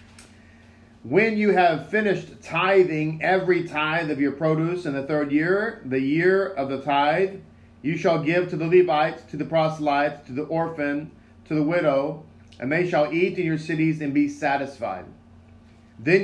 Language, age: English, 40-59